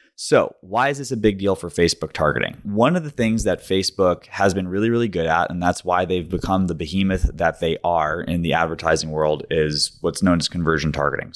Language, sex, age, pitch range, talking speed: English, male, 20-39, 80-100 Hz, 220 wpm